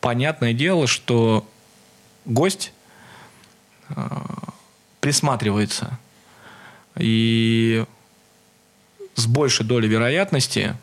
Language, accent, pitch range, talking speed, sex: Russian, native, 115-145 Hz, 55 wpm, male